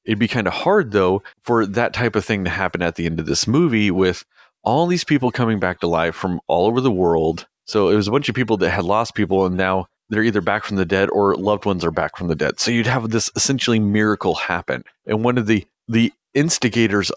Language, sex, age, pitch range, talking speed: English, male, 30-49, 90-115 Hz, 250 wpm